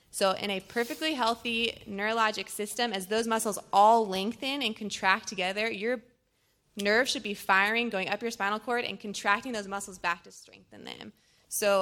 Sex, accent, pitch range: female, American, 195-230 Hz